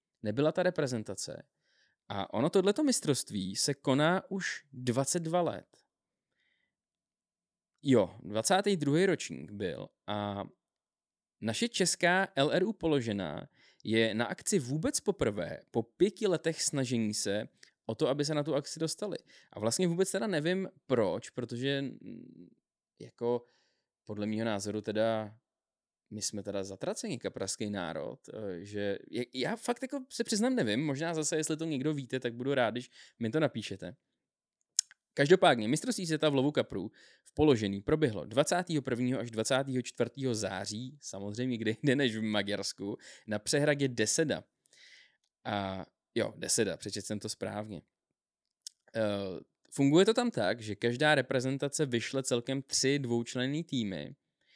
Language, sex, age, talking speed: Czech, male, 20-39, 130 wpm